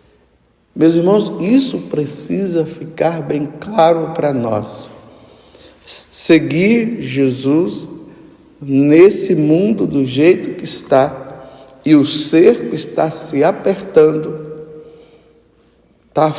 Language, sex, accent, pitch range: Portuguese, male, Brazilian, 145-195 Hz